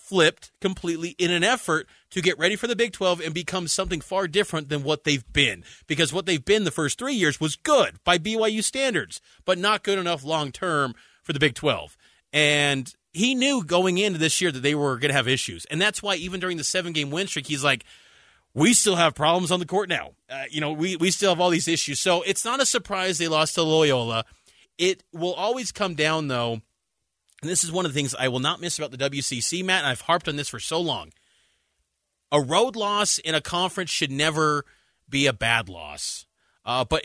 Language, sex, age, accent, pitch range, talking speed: English, male, 30-49, American, 150-190 Hz, 225 wpm